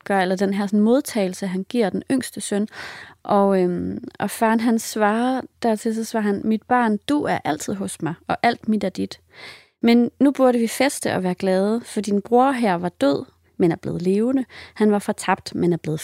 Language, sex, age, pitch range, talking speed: English, female, 30-49, 195-240 Hz, 215 wpm